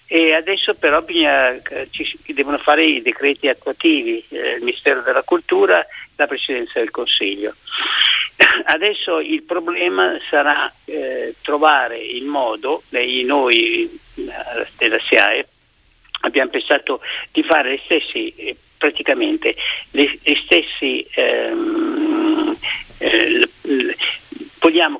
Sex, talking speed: male, 85 wpm